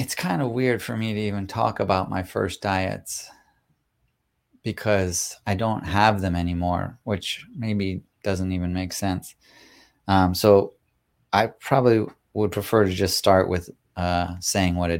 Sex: male